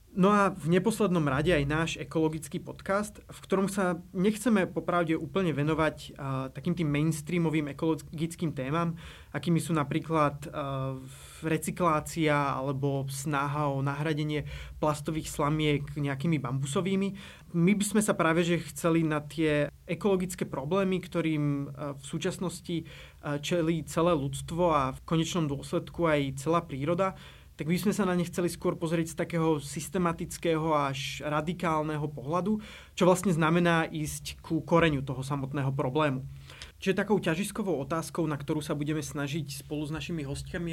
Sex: male